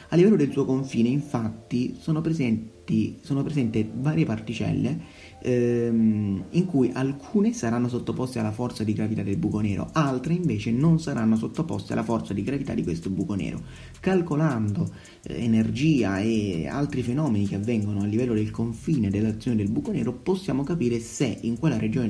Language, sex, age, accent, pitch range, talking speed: Italian, male, 30-49, native, 100-135 Hz, 160 wpm